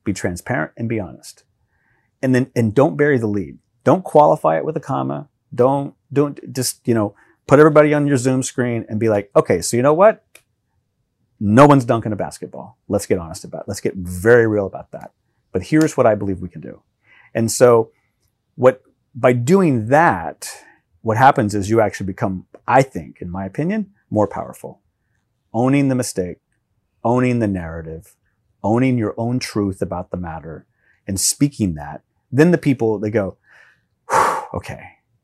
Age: 30-49